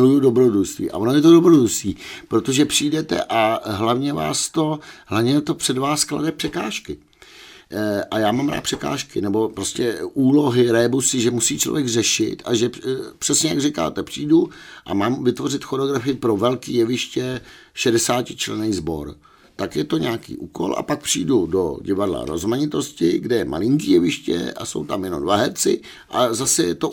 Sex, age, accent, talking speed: male, 60-79, native, 165 wpm